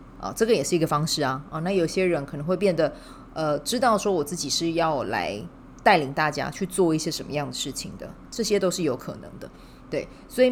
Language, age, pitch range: Chinese, 20-39, 140-180 Hz